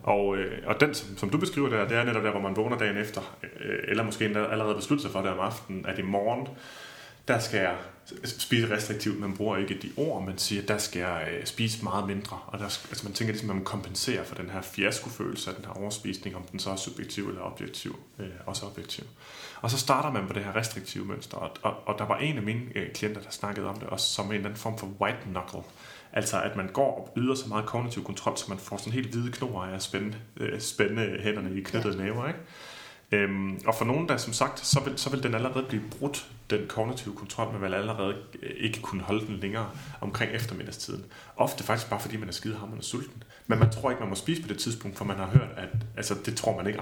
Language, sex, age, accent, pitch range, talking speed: Danish, male, 30-49, native, 100-115 Hz, 235 wpm